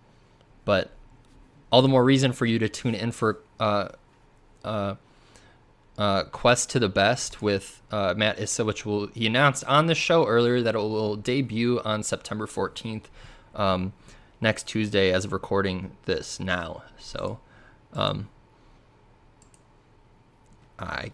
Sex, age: male, 20-39